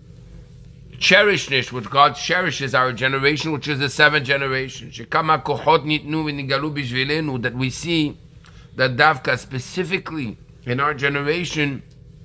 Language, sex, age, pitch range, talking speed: English, male, 50-69, 130-155 Hz, 100 wpm